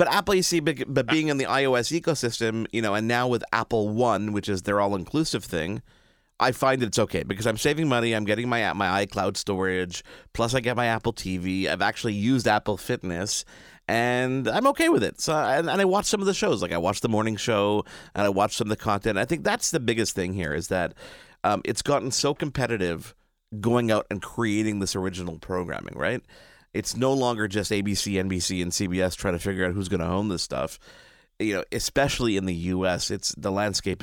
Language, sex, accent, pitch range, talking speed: English, male, American, 95-125 Hz, 215 wpm